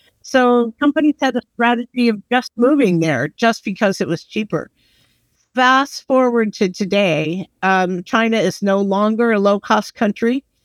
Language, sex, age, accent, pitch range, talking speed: English, female, 50-69, American, 180-225 Hz, 145 wpm